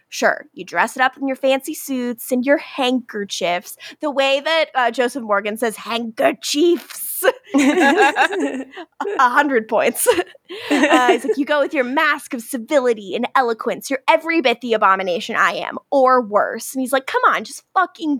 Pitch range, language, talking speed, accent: 220-300 Hz, English, 170 wpm, American